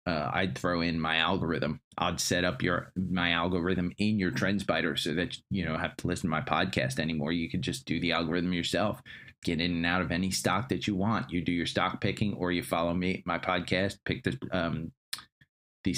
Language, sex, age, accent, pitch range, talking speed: English, male, 30-49, American, 80-105 Hz, 220 wpm